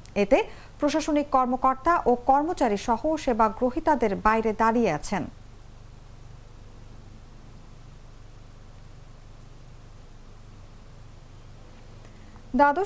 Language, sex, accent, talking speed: English, female, Indian, 55 wpm